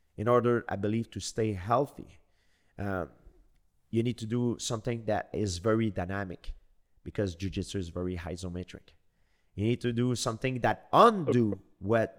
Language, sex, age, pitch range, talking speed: English, male, 30-49, 95-130 Hz, 150 wpm